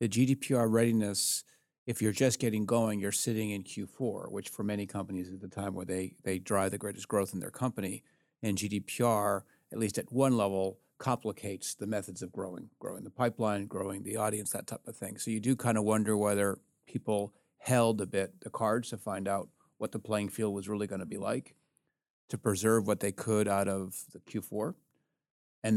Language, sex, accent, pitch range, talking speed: English, male, American, 100-115 Hz, 200 wpm